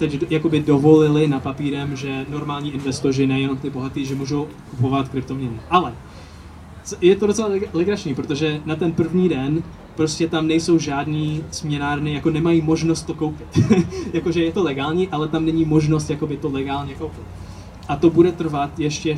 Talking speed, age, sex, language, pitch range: 165 wpm, 20-39, male, Czech, 135-160 Hz